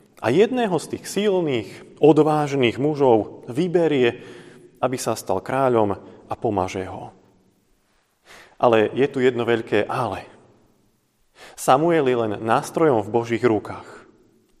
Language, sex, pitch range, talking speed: Slovak, male, 115-155 Hz, 115 wpm